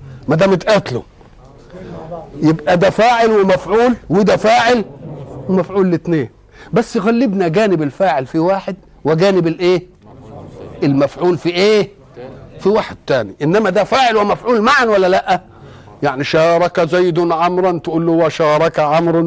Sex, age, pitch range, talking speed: male, 50-69, 135-190 Hz, 125 wpm